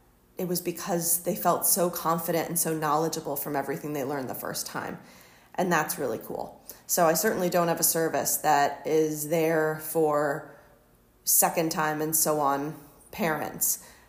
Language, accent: English, American